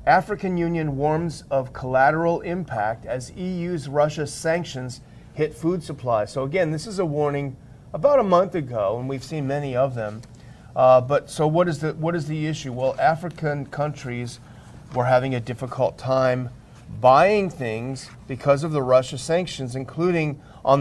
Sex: male